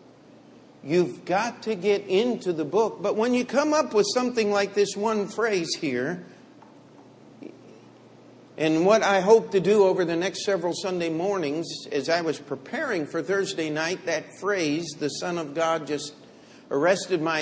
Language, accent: English, American